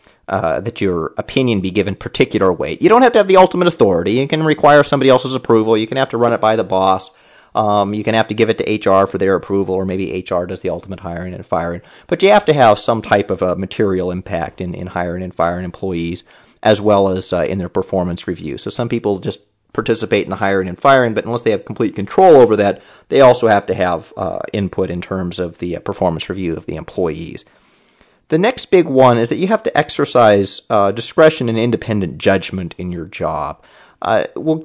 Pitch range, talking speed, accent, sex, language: 95-125 Hz, 230 wpm, American, male, English